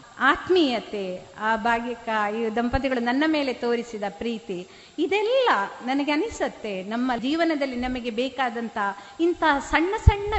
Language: Kannada